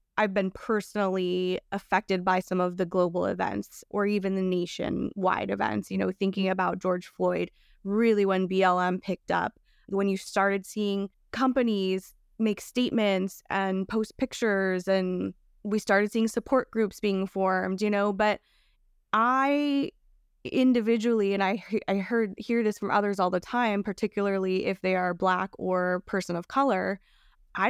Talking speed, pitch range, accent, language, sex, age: 150 wpm, 185-225 Hz, American, English, female, 20-39